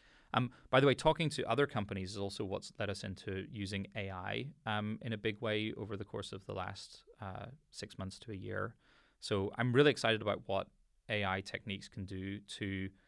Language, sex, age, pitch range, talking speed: English, male, 20-39, 95-115 Hz, 200 wpm